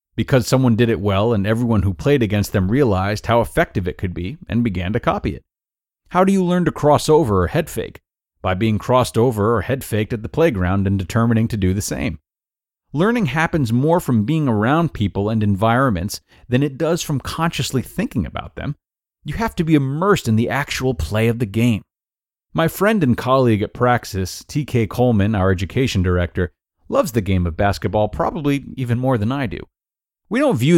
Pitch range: 100-145 Hz